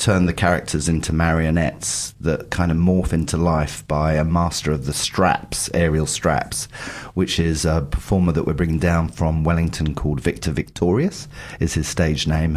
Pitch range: 75-95 Hz